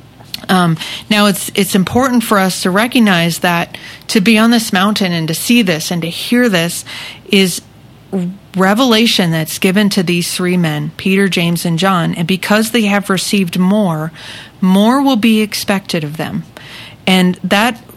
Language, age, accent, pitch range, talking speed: English, 40-59, American, 175-205 Hz, 165 wpm